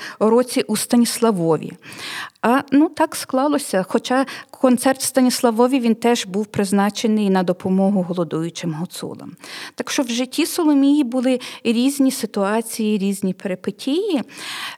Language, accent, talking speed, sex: Ukrainian, native, 110 wpm, female